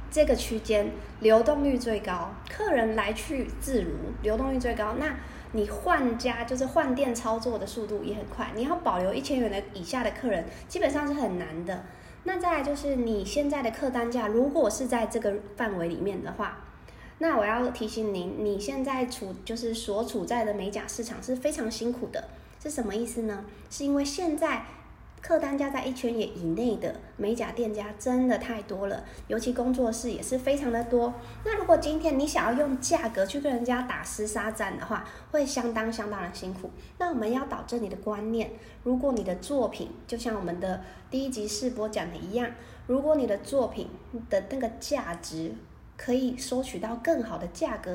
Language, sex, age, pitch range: Chinese, female, 20-39, 215-270 Hz